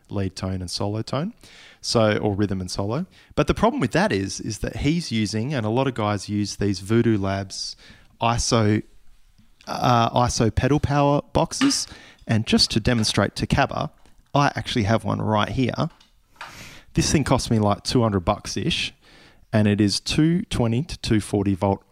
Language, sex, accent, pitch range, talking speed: English, male, Australian, 100-125 Hz, 170 wpm